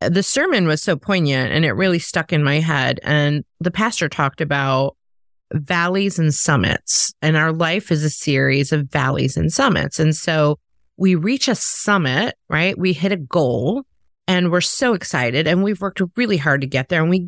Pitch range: 145-185 Hz